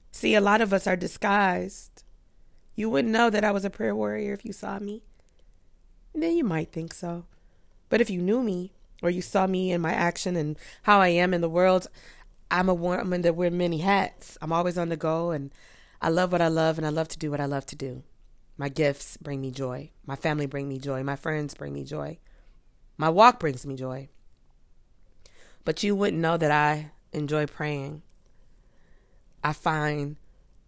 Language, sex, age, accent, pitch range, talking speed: English, female, 20-39, American, 150-190 Hz, 200 wpm